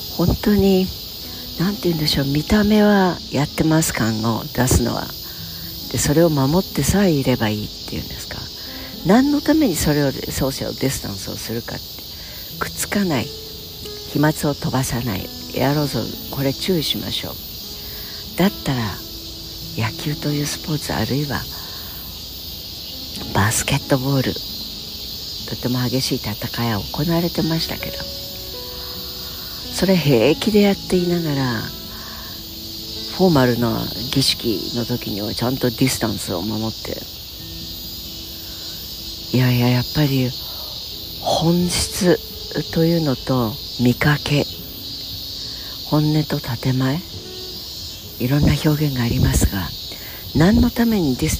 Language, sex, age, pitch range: Japanese, female, 60-79, 90-150 Hz